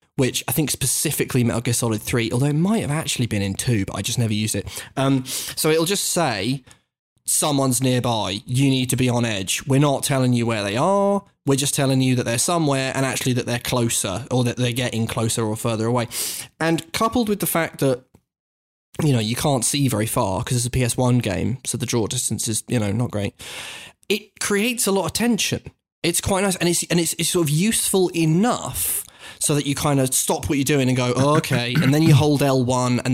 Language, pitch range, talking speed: English, 120-155 Hz, 225 wpm